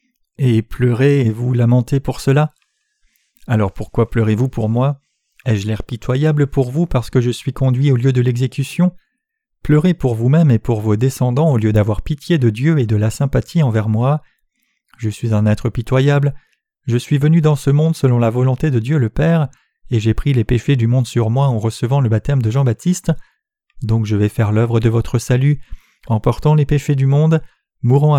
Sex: male